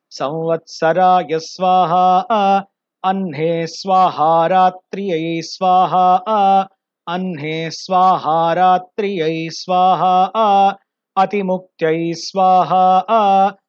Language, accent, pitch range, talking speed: Hindi, native, 170-195 Hz, 65 wpm